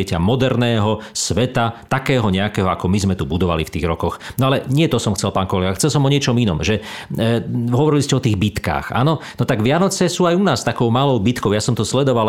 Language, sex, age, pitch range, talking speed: Slovak, male, 40-59, 100-135 Hz, 230 wpm